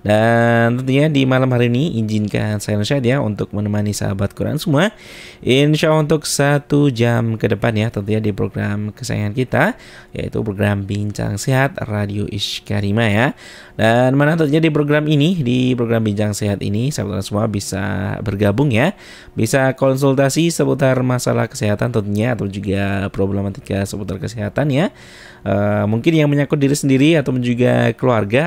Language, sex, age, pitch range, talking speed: Indonesian, male, 20-39, 105-135 Hz, 155 wpm